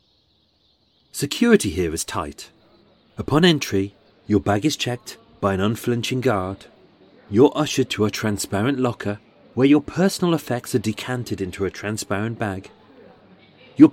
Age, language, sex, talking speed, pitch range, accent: 40-59, English, male, 135 wpm, 100-145 Hz, British